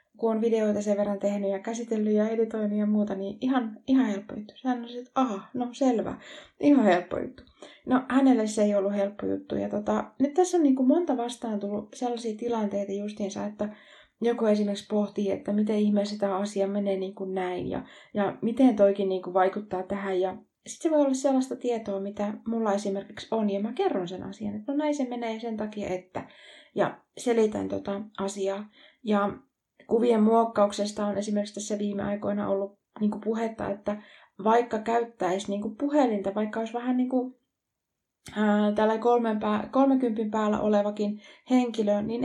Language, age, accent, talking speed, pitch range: Finnish, 20-39, native, 175 wpm, 200-240 Hz